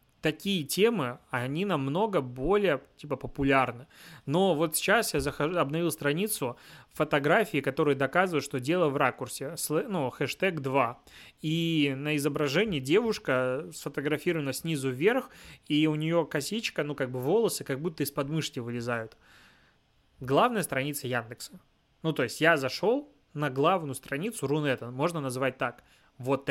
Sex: male